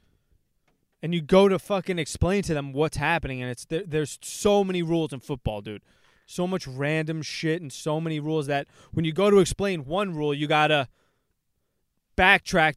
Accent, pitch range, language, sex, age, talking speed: American, 125-165 Hz, English, male, 20-39, 190 wpm